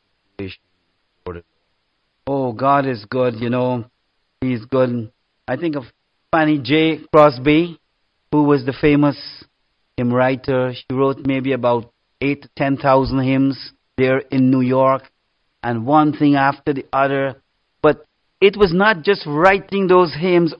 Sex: male